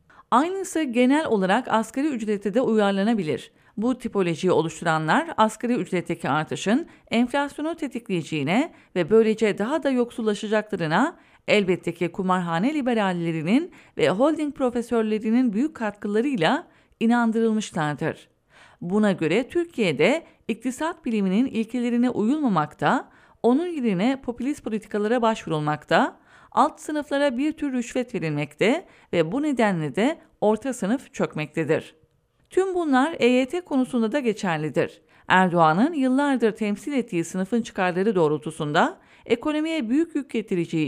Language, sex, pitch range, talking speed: English, female, 195-275 Hz, 105 wpm